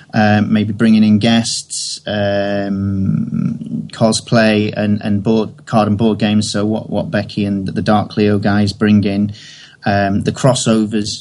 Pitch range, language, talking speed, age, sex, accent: 100-115 Hz, English, 150 wpm, 30-49, male, British